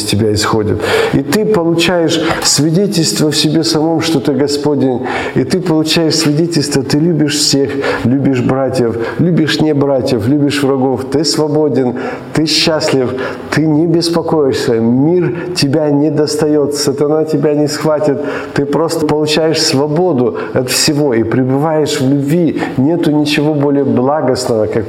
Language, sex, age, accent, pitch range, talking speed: Ukrainian, male, 50-69, native, 115-150 Hz, 135 wpm